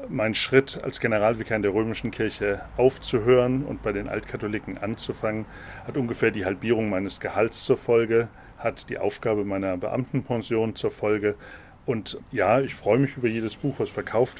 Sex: male